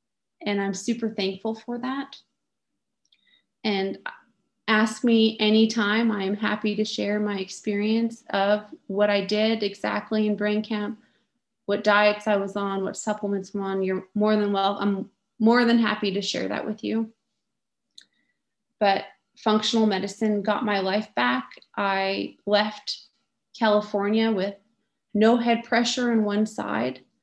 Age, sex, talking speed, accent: 30-49, female, 140 wpm, American